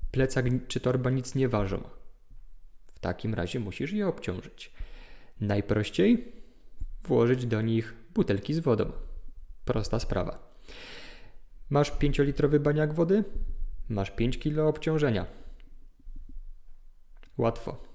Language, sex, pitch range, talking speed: Polish, male, 105-135 Hz, 105 wpm